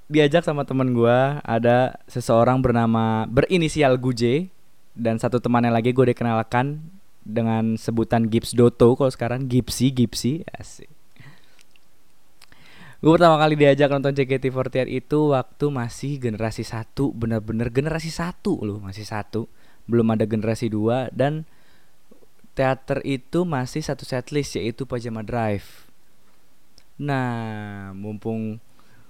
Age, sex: 20-39, male